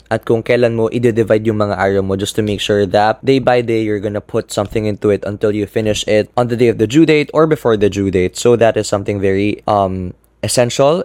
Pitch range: 110-150 Hz